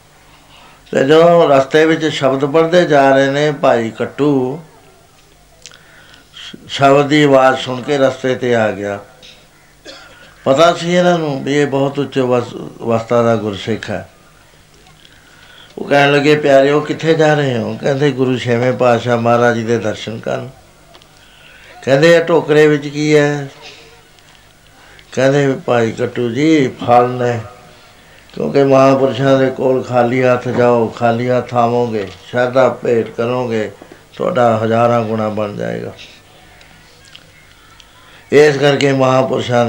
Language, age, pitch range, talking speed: Punjabi, 60-79, 120-140 Hz, 115 wpm